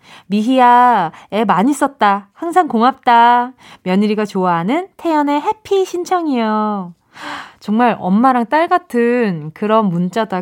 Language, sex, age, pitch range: Korean, female, 20-39, 195-290 Hz